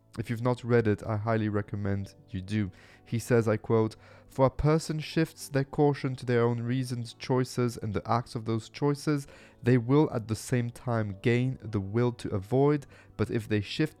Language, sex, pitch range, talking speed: English, male, 110-135 Hz, 195 wpm